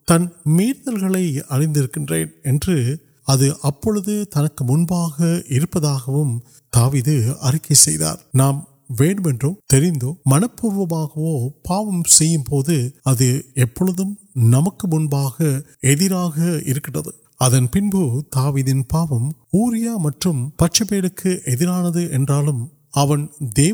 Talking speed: 30 wpm